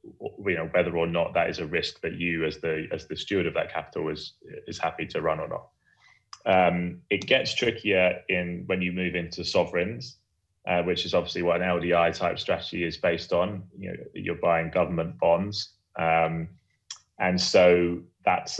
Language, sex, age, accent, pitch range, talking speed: English, male, 20-39, British, 85-95 Hz, 185 wpm